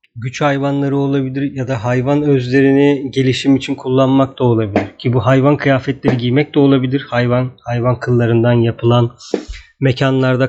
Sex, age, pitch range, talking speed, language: male, 40-59, 120-140 Hz, 135 wpm, Turkish